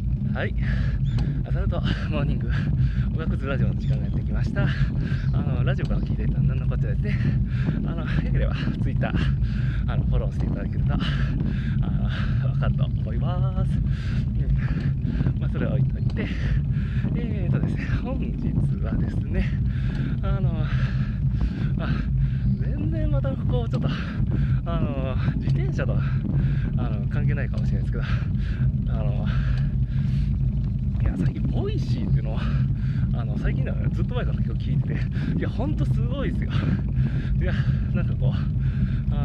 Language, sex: Japanese, male